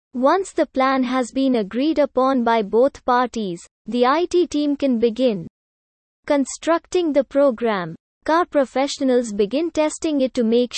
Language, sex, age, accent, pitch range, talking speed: English, female, 20-39, Indian, 240-295 Hz, 140 wpm